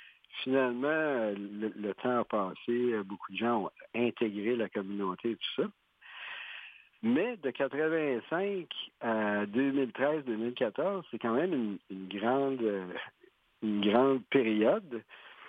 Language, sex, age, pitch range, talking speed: French, male, 60-79, 105-135 Hz, 115 wpm